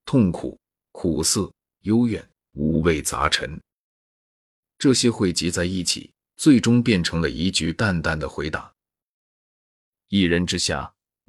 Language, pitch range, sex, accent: Chinese, 85-110 Hz, male, native